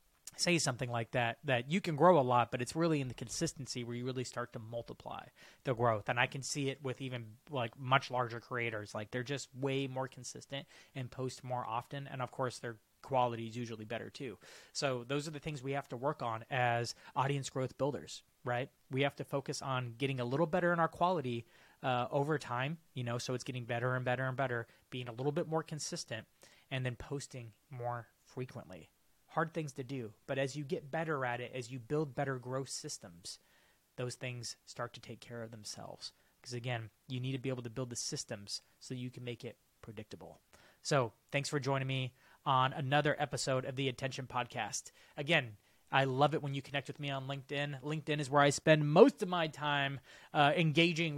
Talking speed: 210 wpm